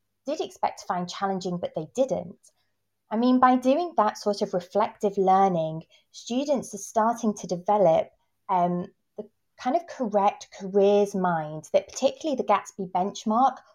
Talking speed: 150 wpm